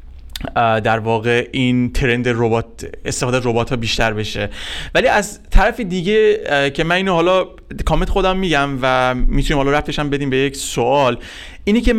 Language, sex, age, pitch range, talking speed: Persian, male, 30-49, 135-185 Hz, 150 wpm